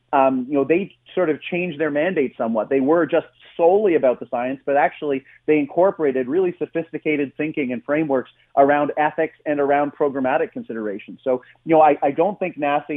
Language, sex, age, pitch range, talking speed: English, male, 30-49, 130-155 Hz, 185 wpm